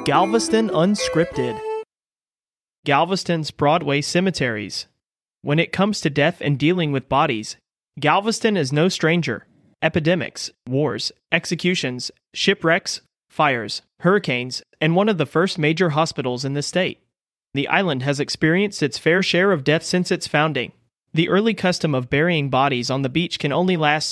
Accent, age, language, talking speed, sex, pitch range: American, 30-49, English, 145 wpm, male, 140-175 Hz